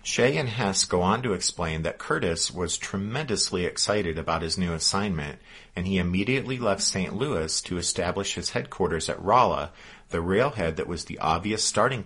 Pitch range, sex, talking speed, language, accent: 85-100 Hz, male, 175 wpm, English, American